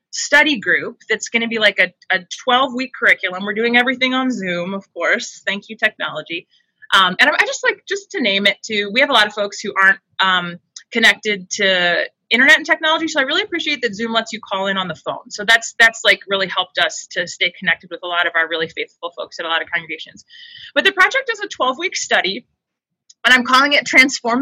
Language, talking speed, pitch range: English, 230 wpm, 200-275 Hz